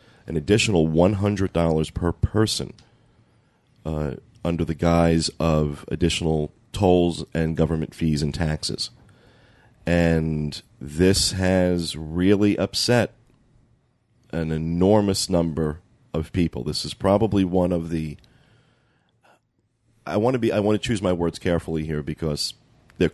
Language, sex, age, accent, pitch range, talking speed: English, male, 30-49, American, 80-105 Hz, 115 wpm